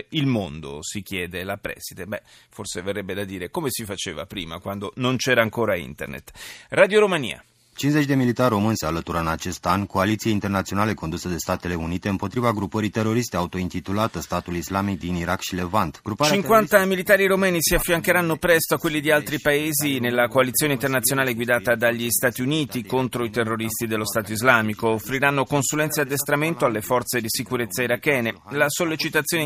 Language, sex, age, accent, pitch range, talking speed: Italian, male, 30-49, native, 105-145 Hz, 115 wpm